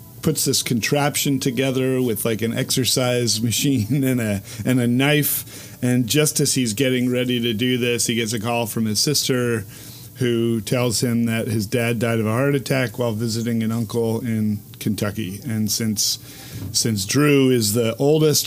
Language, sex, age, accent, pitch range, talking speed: English, male, 40-59, American, 115-130 Hz, 175 wpm